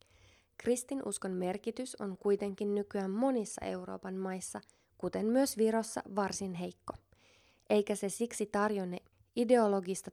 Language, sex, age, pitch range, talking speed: Finnish, female, 20-39, 165-210 Hz, 105 wpm